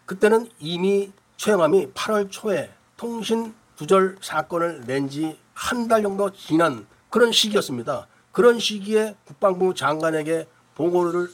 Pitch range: 160-220 Hz